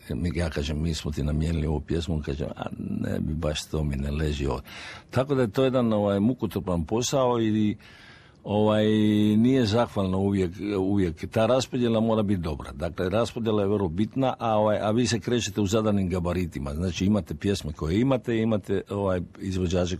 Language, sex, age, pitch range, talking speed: Croatian, male, 60-79, 85-110 Hz, 175 wpm